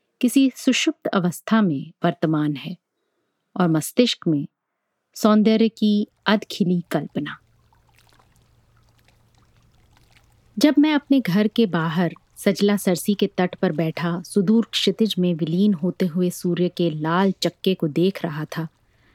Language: Hindi